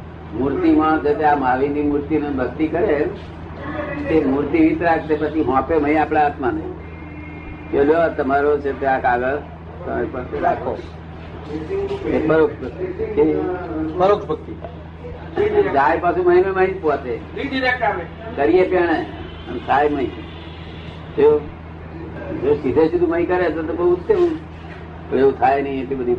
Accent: native